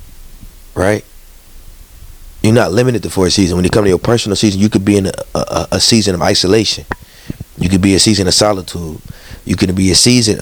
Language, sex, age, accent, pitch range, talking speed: English, male, 30-49, American, 90-110 Hz, 205 wpm